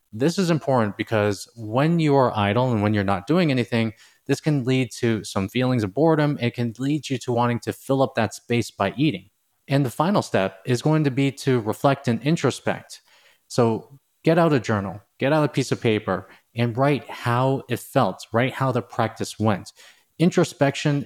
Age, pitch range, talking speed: 20-39, 110-135 Hz, 195 wpm